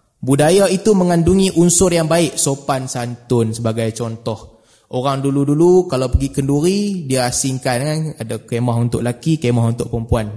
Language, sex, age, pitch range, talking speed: Malay, male, 20-39, 120-155 Hz, 145 wpm